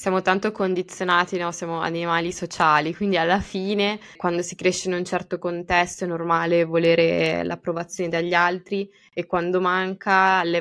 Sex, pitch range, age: female, 165-190 Hz, 20-39